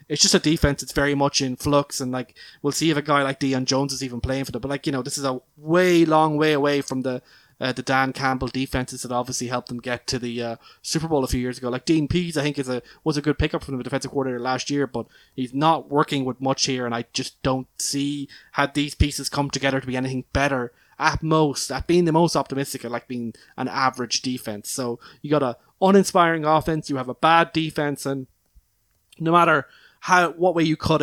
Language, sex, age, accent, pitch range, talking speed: English, male, 20-39, Irish, 125-150 Hz, 245 wpm